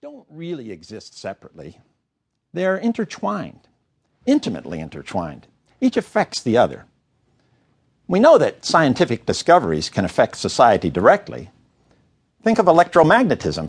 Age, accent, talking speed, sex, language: 60-79, American, 110 wpm, male, English